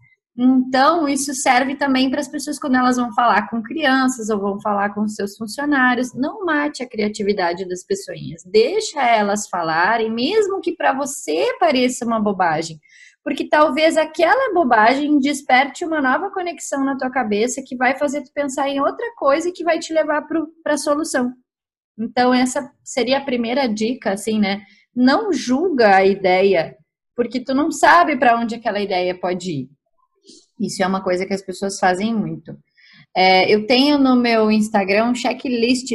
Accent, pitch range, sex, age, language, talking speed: Brazilian, 195-275 Hz, female, 20-39, Portuguese, 165 wpm